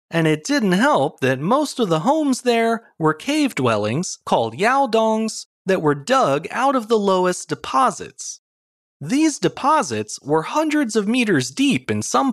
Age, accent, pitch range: 30-49, American, 155-245 Hz